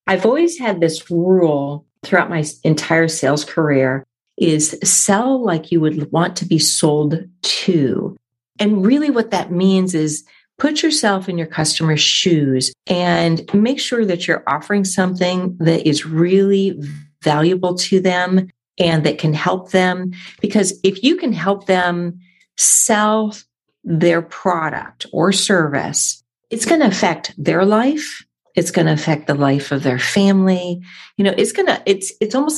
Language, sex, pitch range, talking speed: English, female, 155-195 Hz, 155 wpm